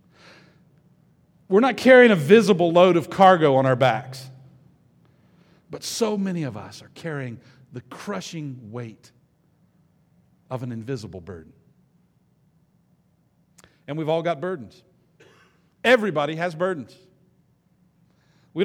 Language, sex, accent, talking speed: English, male, American, 110 wpm